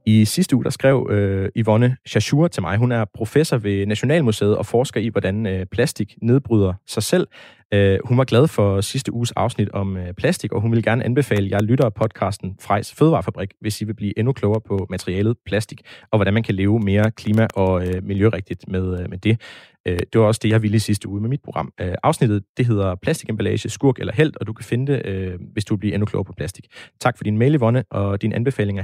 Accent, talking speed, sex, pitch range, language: native, 225 wpm, male, 100-120 Hz, Danish